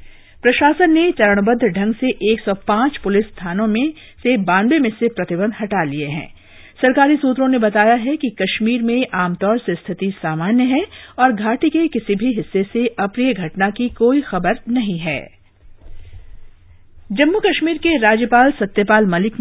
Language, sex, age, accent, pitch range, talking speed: English, female, 50-69, Indian, 160-250 Hz, 150 wpm